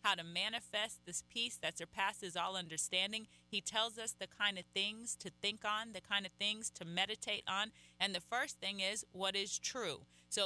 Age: 30-49